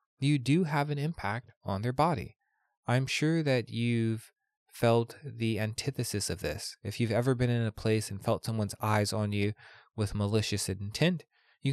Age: 20-39